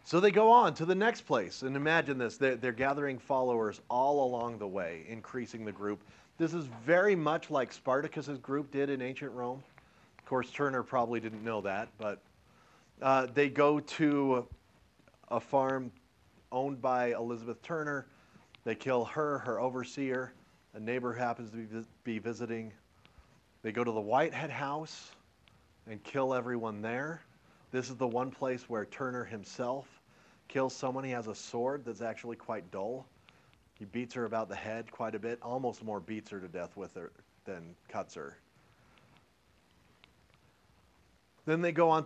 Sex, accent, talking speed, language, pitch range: male, American, 165 wpm, English, 110-135 Hz